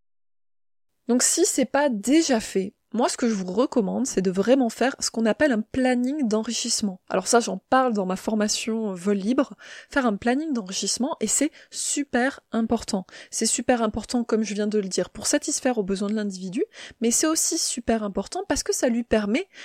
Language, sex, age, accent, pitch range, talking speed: French, female, 20-39, French, 210-280 Hz, 195 wpm